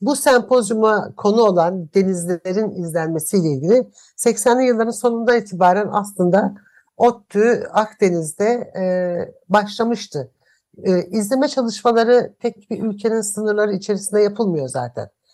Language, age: Turkish, 60-79